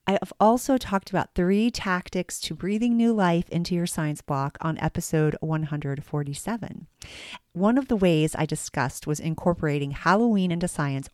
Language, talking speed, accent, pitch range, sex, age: English, 155 wpm, American, 155-210 Hz, female, 40-59